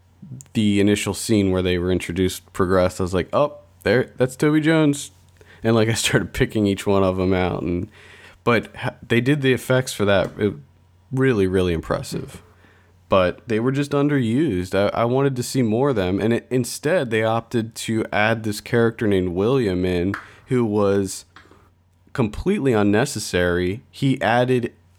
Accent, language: American, English